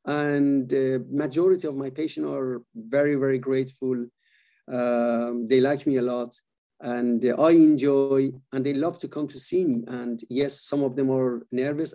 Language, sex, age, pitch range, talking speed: English, male, 50-69, 130-160 Hz, 170 wpm